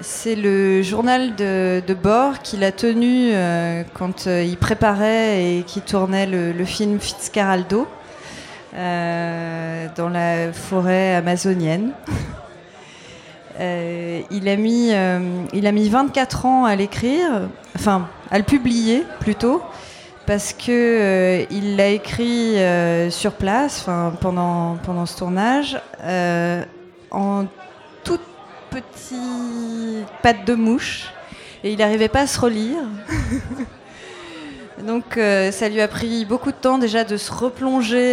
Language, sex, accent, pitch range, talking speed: French, female, French, 180-230 Hz, 130 wpm